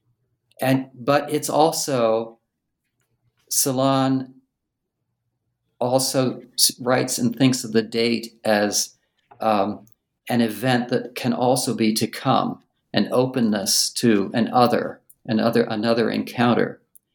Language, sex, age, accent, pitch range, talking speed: English, male, 50-69, American, 110-125 Hz, 105 wpm